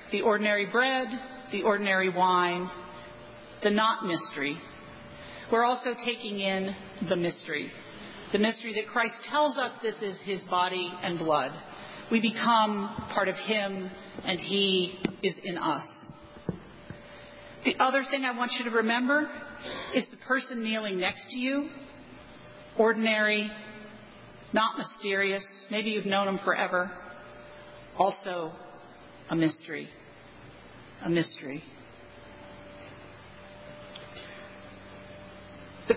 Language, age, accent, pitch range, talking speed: English, 40-59, American, 180-240 Hz, 110 wpm